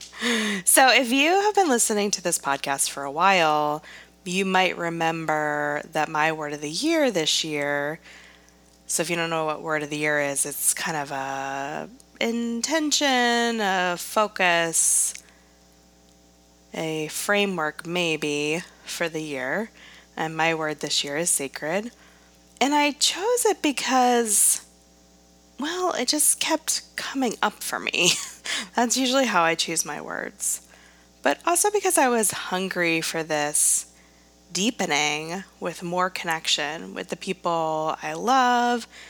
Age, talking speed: 20-39, 140 wpm